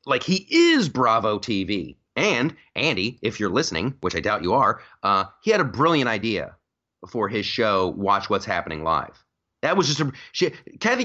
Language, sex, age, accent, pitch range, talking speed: English, male, 30-49, American, 120-175 Hz, 180 wpm